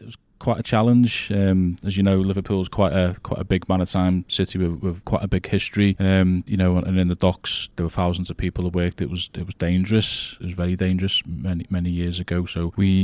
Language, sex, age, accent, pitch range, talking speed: Swedish, male, 20-39, British, 85-95 Hz, 255 wpm